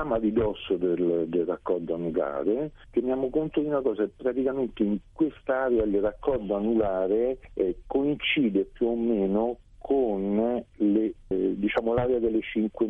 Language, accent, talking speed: Italian, native, 135 wpm